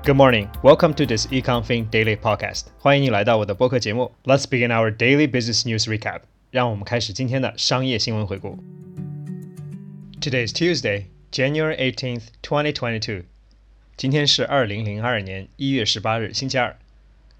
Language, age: Chinese, 20-39